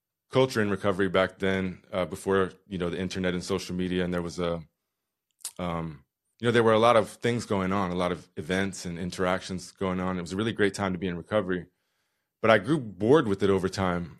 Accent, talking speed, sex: American, 235 wpm, male